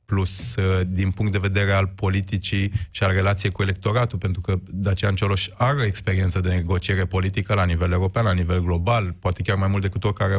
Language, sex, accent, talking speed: Romanian, male, native, 190 wpm